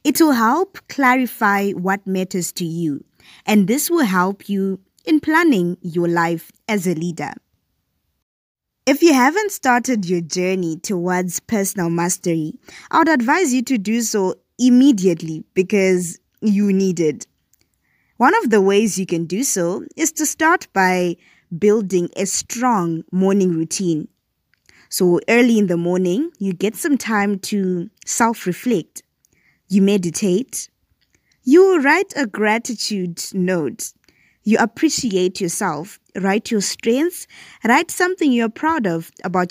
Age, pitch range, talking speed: 20-39, 180-250 Hz, 135 wpm